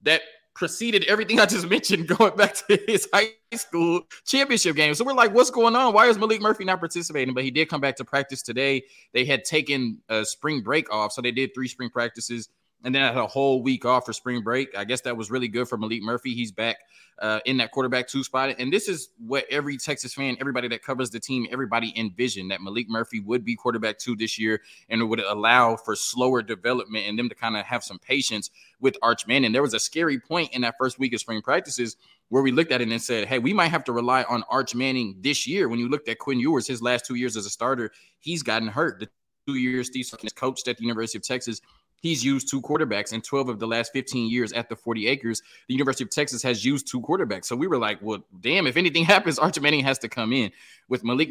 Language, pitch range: English, 115-140 Hz